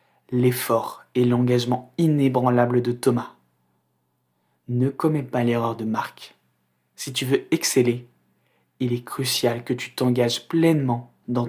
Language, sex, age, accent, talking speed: French, male, 20-39, French, 125 wpm